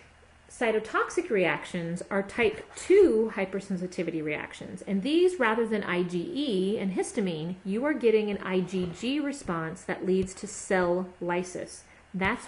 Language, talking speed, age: English, 125 wpm, 30-49